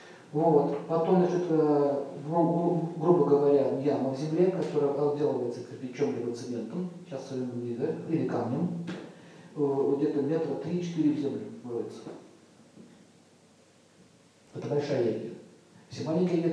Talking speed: 115 wpm